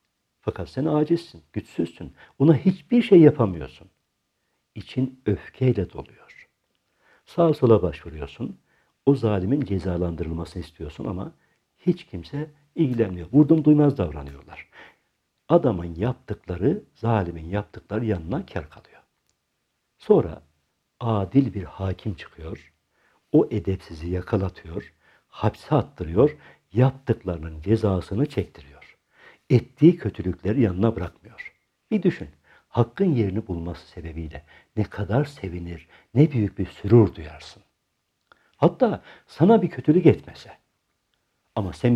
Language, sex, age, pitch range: Turkish, male, 60-79, 90-135 Hz